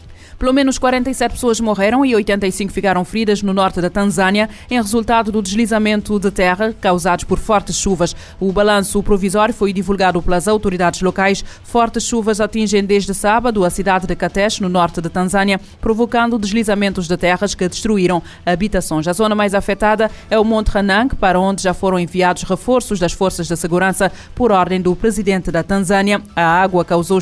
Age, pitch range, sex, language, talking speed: 20-39, 185-220 Hz, female, Portuguese, 170 wpm